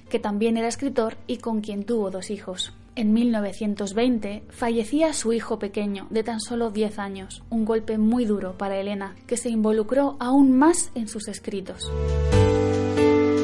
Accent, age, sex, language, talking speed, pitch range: Spanish, 20-39, female, Spanish, 155 wpm, 200-250 Hz